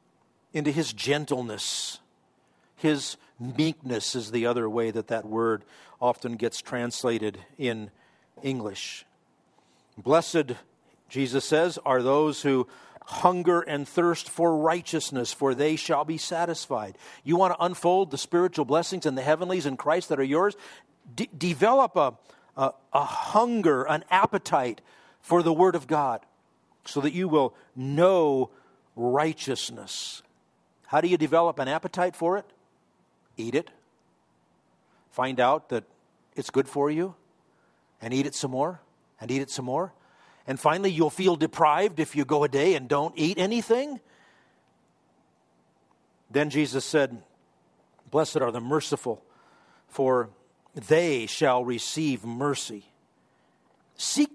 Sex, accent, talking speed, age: male, American, 130 wpm, 50-69